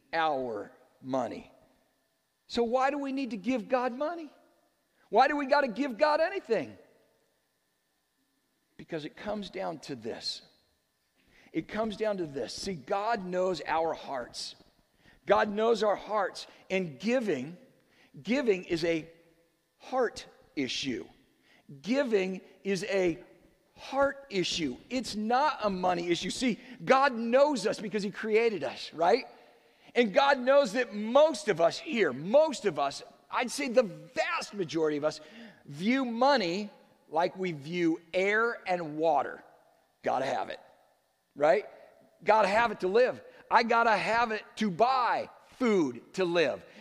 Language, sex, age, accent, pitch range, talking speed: English, male, 50-69, American, 195-260 Hz, 140 wpm